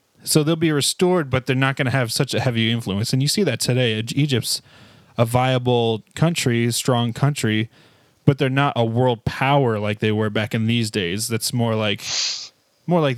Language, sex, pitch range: English, male, 115-140 Hz